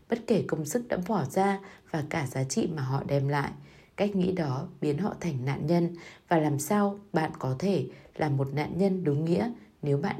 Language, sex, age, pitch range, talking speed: Vietnamese, female, 20-39, 140-200 Hz, 220 wpm